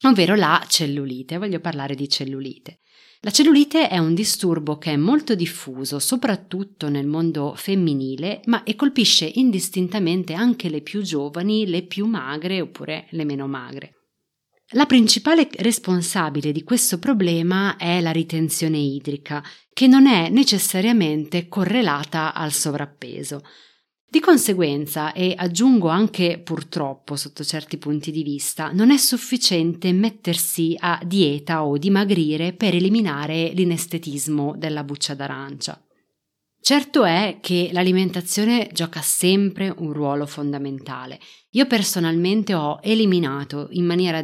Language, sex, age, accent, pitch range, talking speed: Italian, female, 30-49, native, 150-200 Hz, 125 wpm